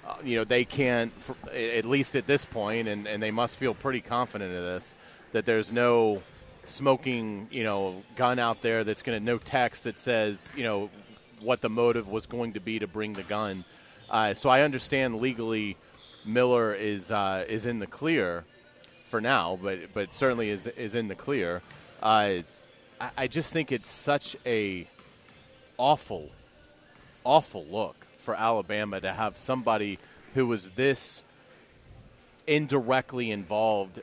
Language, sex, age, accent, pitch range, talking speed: English, male, 30-49, American, 105-130 Hz, 160 wpm